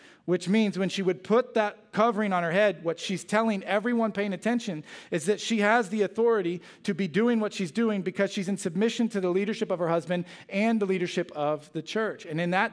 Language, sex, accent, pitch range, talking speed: English, male, American, 160-200 Hz, 225 wpm